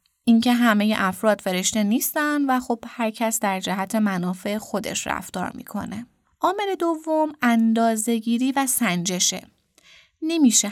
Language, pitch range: Persian, 190-230 Hz